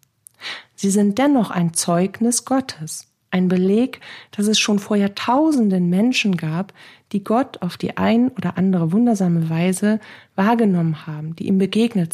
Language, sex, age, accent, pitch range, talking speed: German, female, 40-59, German, 170-220 Hz, 145 wpm